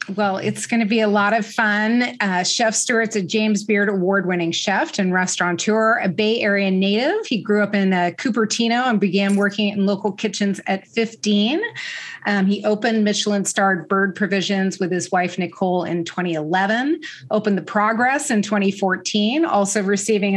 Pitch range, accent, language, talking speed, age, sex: 185-215 Hz, American, English, 165 wpm, 30-49, female